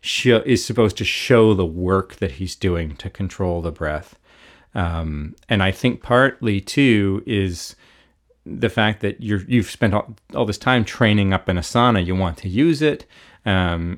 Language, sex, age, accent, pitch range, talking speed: English, male, 40-59, American, 90-115 Hz, 170 wpm